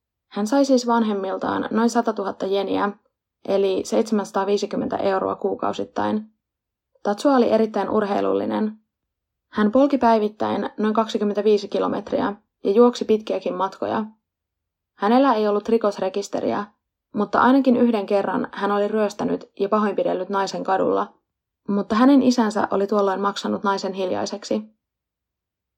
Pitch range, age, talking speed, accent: 190-230 Hz, 20-39, 115 wpm, native